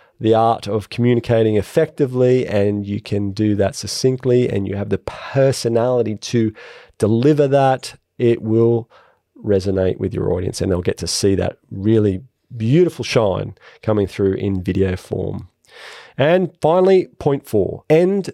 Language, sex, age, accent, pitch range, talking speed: English, male, 40-59, Australian, 110-155 Hz, 145 wpm